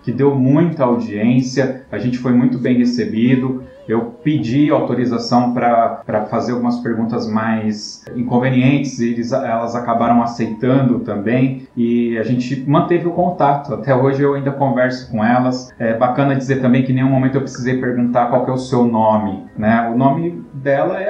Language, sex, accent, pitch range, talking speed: Portuguese, male, Brazilian, 115-130 Hz, 170 wpm